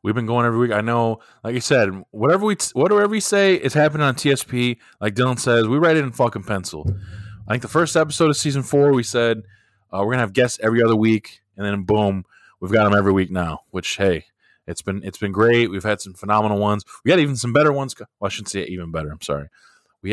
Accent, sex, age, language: American, male, 20-39, English